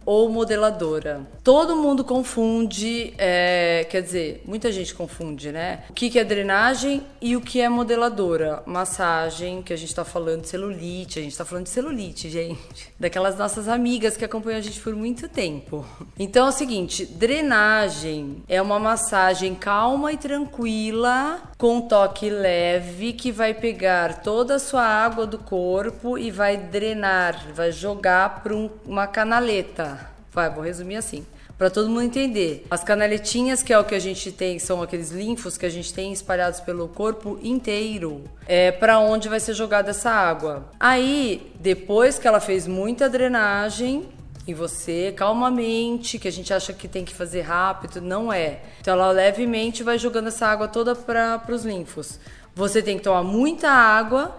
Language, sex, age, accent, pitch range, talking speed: Portuguese, female, 20-39, Brazilian, 180-235 Hz, 170 wpm